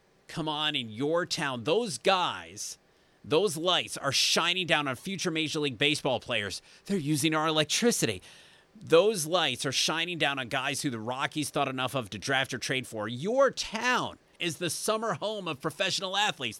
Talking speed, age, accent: 175 wpm, 30-49, American